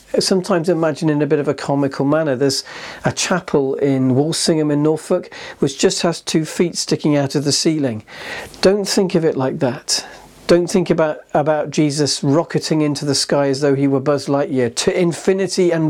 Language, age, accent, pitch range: English, 50-69, British, 140-165 Hz